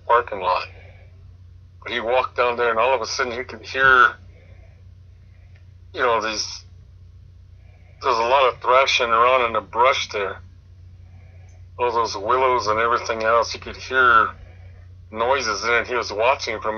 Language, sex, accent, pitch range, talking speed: English, male, American, 90-100 Hz, 155 wpm